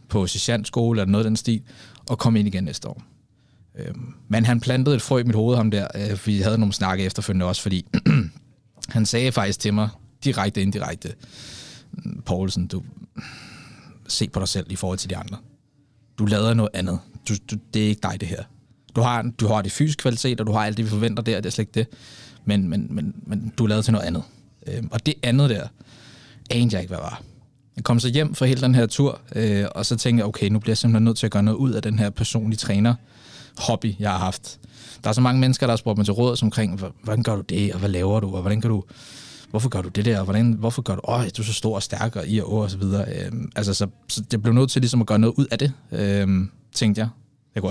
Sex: male